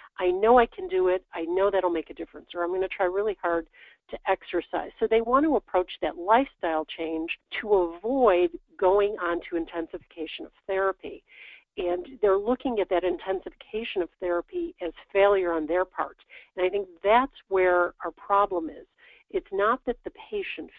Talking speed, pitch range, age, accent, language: 180 wpm, 175-245 Hz, 50-69, American, English